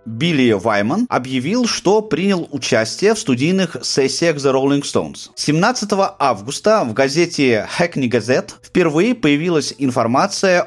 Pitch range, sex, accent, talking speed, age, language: 130-195 Hz, male, native, 120 wpm, 30-49, Russian